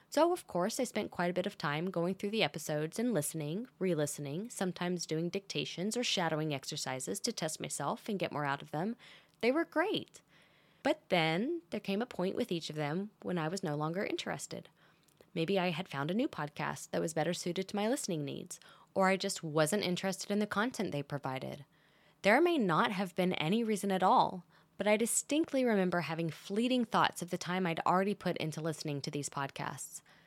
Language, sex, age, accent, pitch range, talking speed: English, female, 10-29, American, 155-210 Hz, 205 wpm